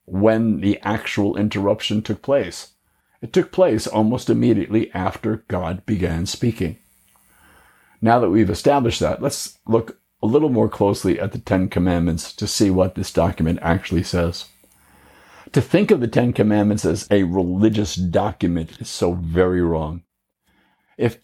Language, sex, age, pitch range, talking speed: English, male, 60-79, 90-115 Hz, 145 wpm